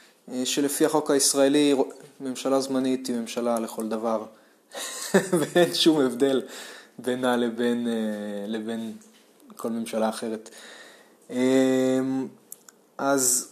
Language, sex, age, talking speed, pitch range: Hebrew, male, 20-39, 85 wpm, 115-150 Hz